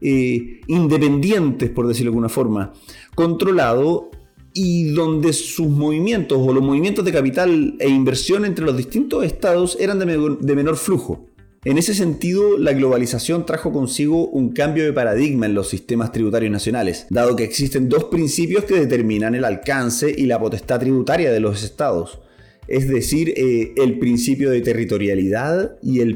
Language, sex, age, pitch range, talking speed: Spanish, male, 30-49, 120-170 Hz, 160 wpm